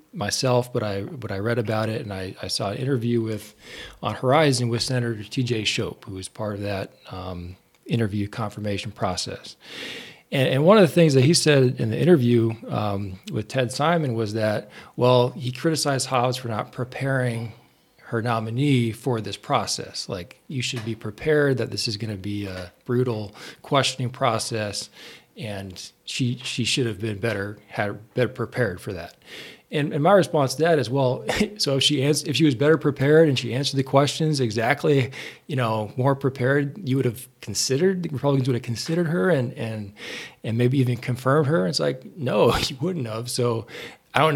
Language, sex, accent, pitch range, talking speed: English, male, American, 110-135 Hz, 190 wpm